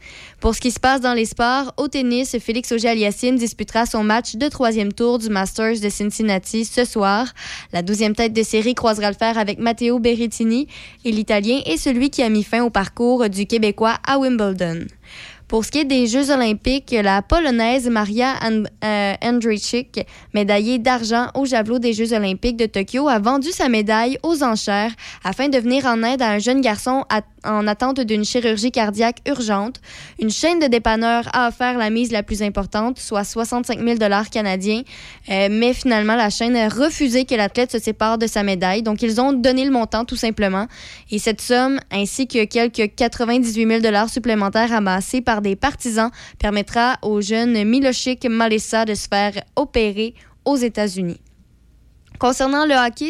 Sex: female